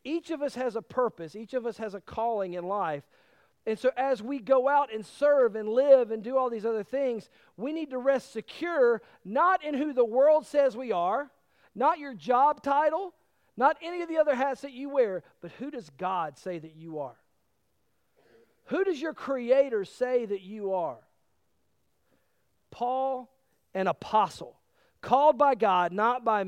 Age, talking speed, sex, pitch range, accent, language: 40-59, 180 wpm, male, 200-275 Hz, American, English